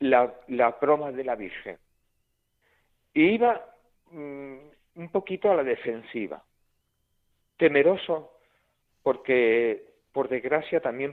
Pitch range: 120-160 Hz